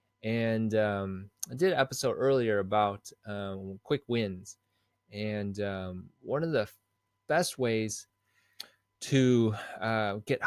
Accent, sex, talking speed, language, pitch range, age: American, male, 120 wpm, English, 100-120 Hz, 20-39